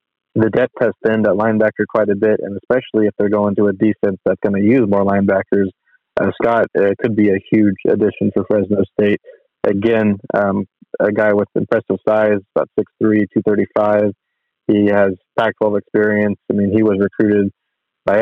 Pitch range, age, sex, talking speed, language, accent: 100-115 Hz, 20-39, male, 180 wpm, English, American